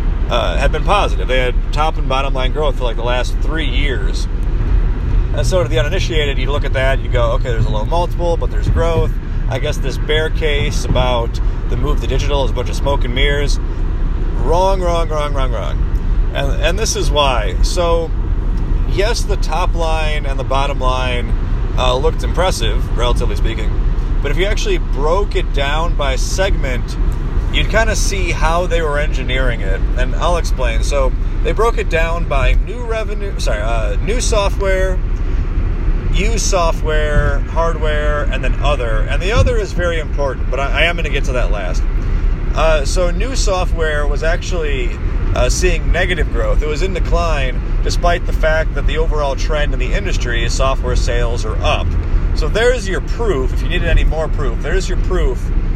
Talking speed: 190 wpm